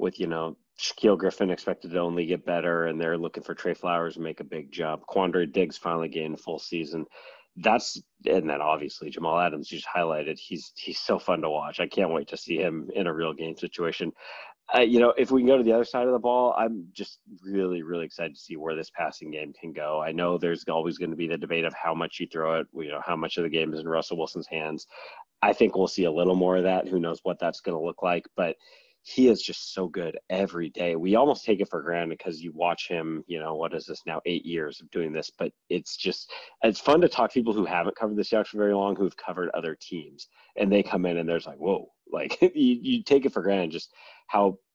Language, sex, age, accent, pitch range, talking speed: English, male, 30-49, American, 85-100 Hz, 260 wpm